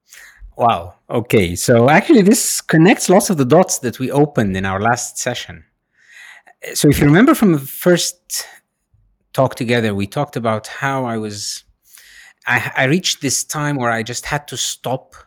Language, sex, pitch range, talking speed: Danish, male, 110-165 Hz, 170 wpm